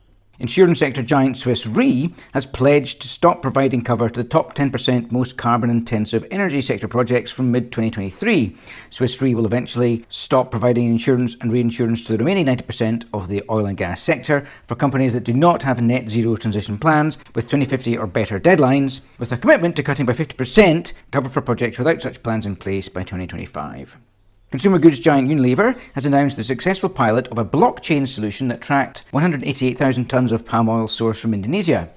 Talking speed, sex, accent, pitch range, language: 180 wpm, male, British, 115-140 Hz, English